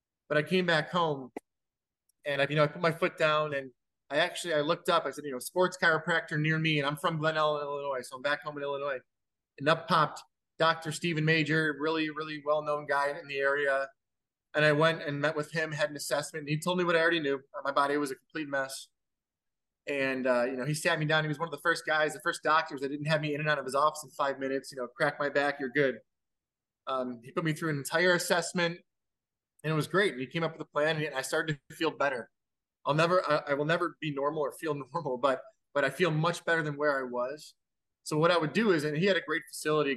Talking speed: 260 wpm